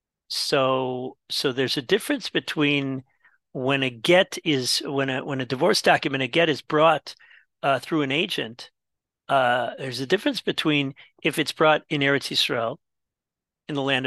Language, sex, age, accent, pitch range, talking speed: English, male, 50-69, American, 135-165 Hz, 160 wpm